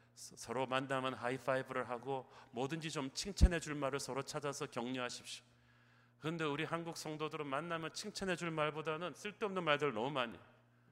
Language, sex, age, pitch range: Korean, male, 40-59, 115-145 Hz